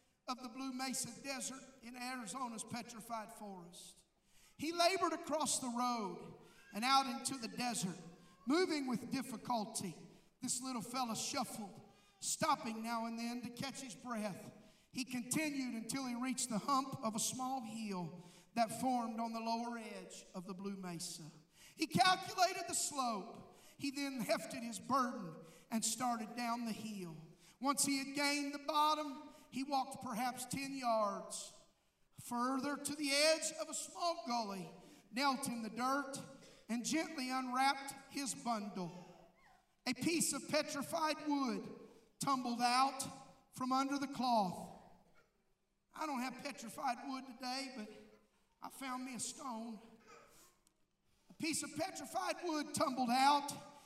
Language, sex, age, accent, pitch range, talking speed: English, male, 50-69, American, 225-285 Hz, 140 wpm